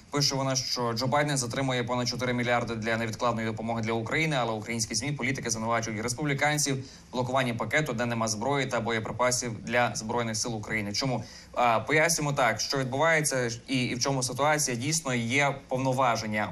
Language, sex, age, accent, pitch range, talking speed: Ukrainian, male, 20-39, native, 115-140 Hz, 155 wpm